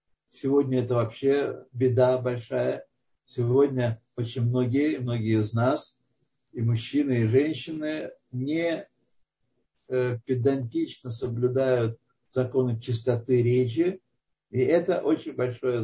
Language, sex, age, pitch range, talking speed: Russian, male, 60-79, 125-190 Hz, 100 wpm